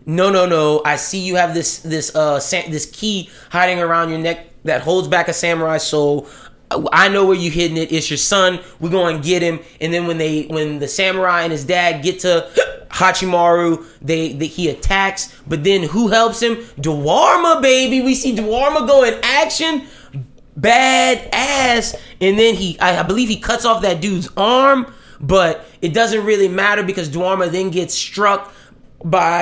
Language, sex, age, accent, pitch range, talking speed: English, male, 20-39, American, 160-190 Hz, 185 wpm